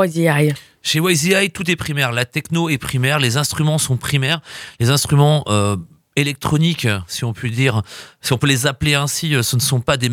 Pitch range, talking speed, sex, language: 115-145 Hz, 190 wpm, male, French